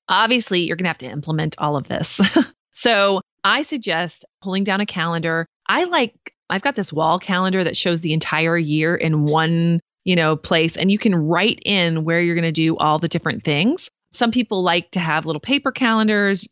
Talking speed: 200 wpm